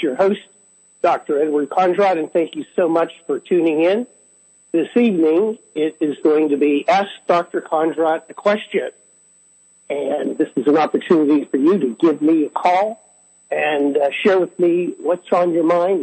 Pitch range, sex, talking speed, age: 155-185 Hz, male, 170 wpm, 60-79